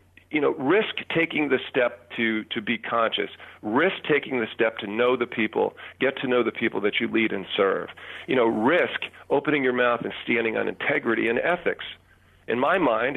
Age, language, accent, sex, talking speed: 40-59, English, American, male, 195 wpm